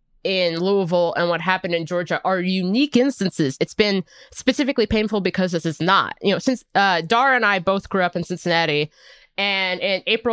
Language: English